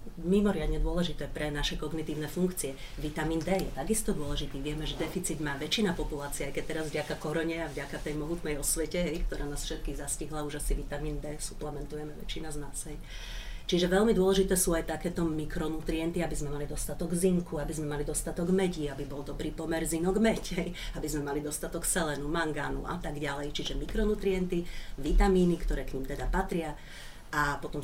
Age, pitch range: 40-59, 145-170 Hz